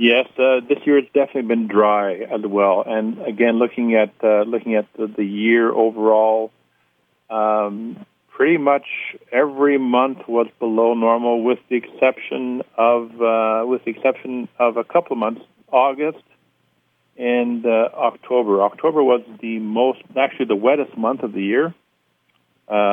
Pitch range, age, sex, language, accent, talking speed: 110-130 Hz, 50-69, male, English, American, 150 wpm